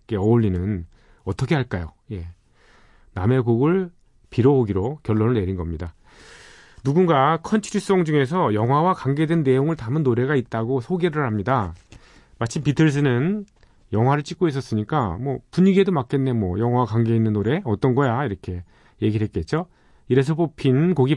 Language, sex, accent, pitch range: Korean, male, native, 100-145 Hz